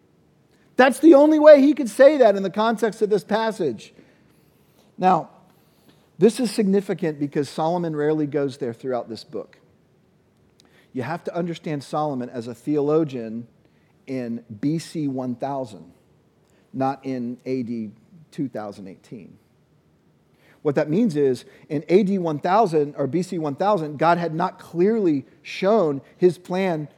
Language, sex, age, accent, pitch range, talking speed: English, male, 40-59, American, 140-210 Hz, 130 wpm